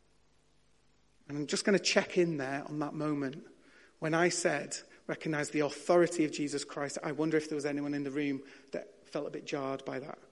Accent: British